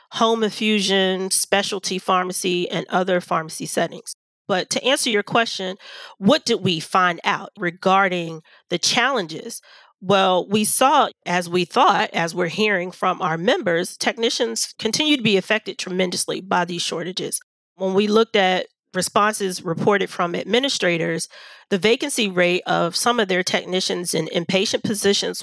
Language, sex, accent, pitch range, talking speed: English, female, American, 180-215 Hz, 145 wpm